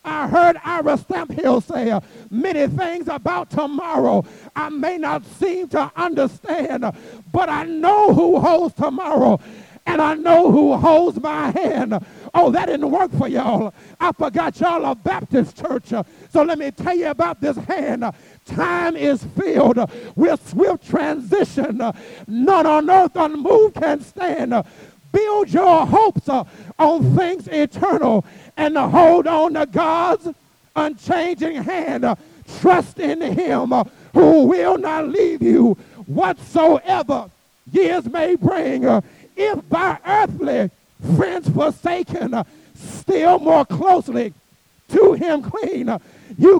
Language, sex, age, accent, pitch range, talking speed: English, male, 50-69, American, 285-350 Hz, 135 wpm